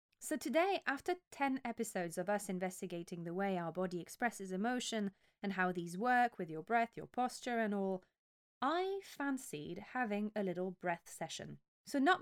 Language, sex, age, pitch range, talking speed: English, female, 20-39, 180-245 Hz, 165 wpm